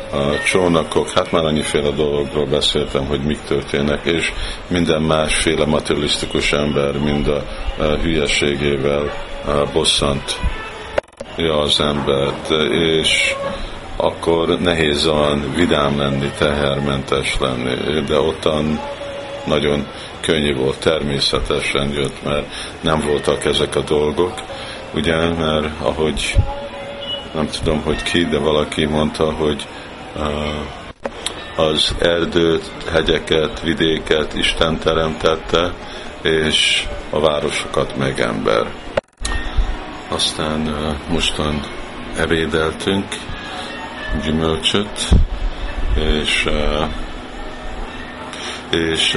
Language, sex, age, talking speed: Hungarian, male, 50-69, 85 wpm